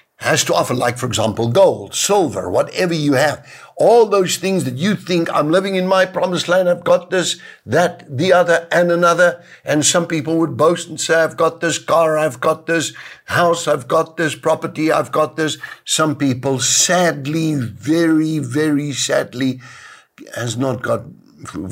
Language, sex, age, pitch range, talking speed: English, male, 60-79, 115-160 Hz, 175 wpm